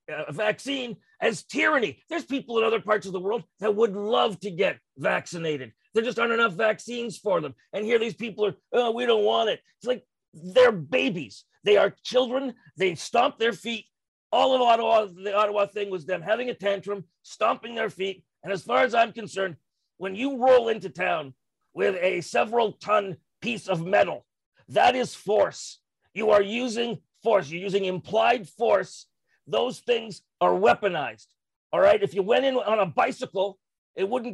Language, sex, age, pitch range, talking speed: English, male, 40-59, 190-240 Hz, 180 wpm